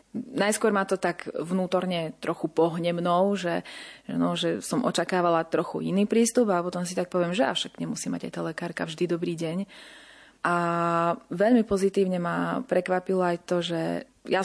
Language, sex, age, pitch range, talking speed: Slovak, female, 20-39, 170-185 Hz, 165 wpm